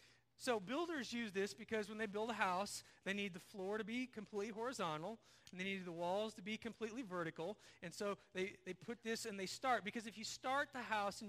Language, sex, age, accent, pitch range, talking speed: English, male, 40-59, American, 170-220 Hz, 230 wpm